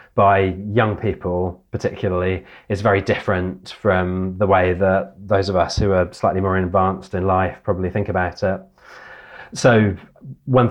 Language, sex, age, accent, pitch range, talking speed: English, male, 30-49, British, 95-110 Hz, 150 wpm